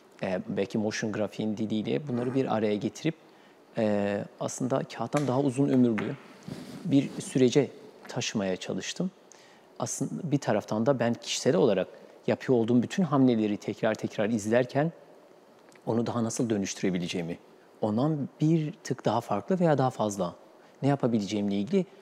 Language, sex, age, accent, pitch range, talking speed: Turkish, male, 40-59, native, 105-130 Hz, 130 wpm